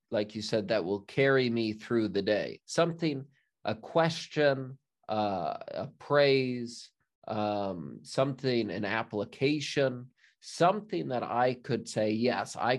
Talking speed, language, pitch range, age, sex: 125 wpm, English, 110-130 Hz, 20-39, male